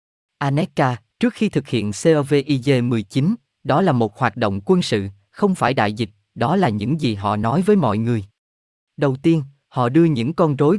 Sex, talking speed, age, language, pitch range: male, 190 wpm, 20-39, Vietnamese, 115-165 Hz